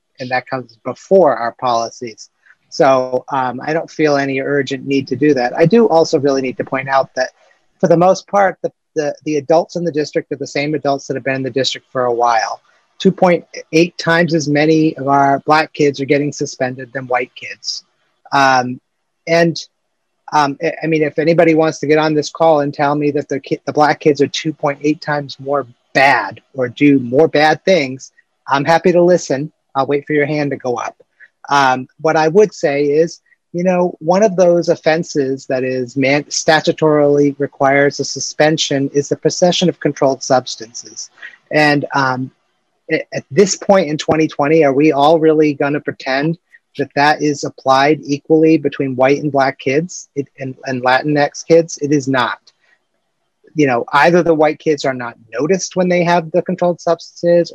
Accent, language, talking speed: American, English, 185 wpm